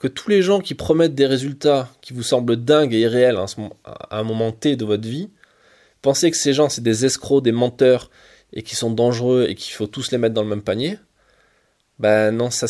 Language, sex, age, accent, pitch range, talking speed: French, male, 20-39, French, 110-135 Hz, 220 wpm